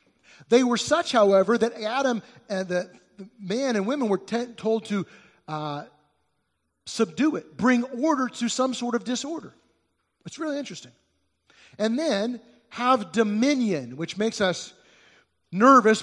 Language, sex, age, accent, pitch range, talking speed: English, male, 40-59, American, 155-225 Hz, 135 wpm